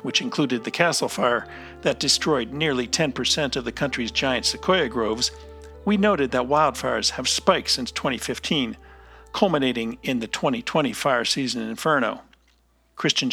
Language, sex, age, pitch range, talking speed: English, male, 50-69, 125-175 Hz, 140 wpm